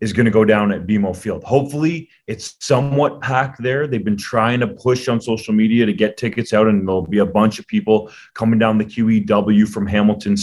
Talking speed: 220 wpm